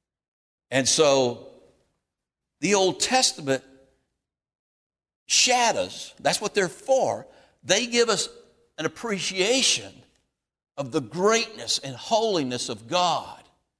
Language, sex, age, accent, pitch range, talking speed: English, male, 60-79, American, 135-210 Hz, 95 wpm